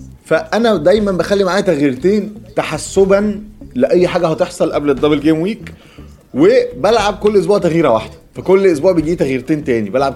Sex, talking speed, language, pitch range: male, 140 wpm, Arabic, 135-195 Hz